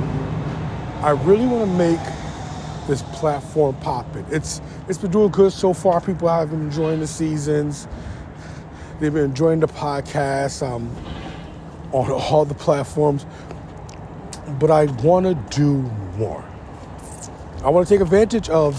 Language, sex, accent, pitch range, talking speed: English, male, American, 100-150 Hz, 135 wpm